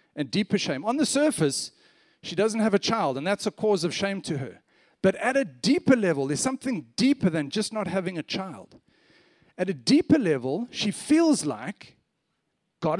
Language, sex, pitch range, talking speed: English, male, 175-245 Hz, 190 wpm